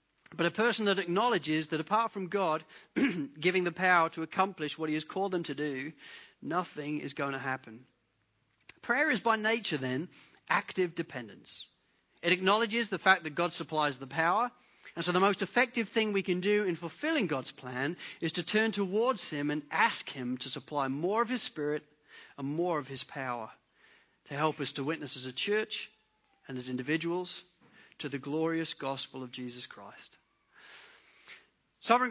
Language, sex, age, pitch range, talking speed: English, male, 40-59, 140-195 Hz, 175 wpm